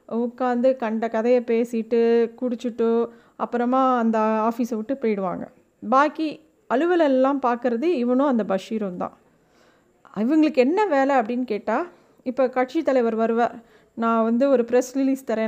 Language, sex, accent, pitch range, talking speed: Tamil, female, native, 230-285 Hz, 125 wpm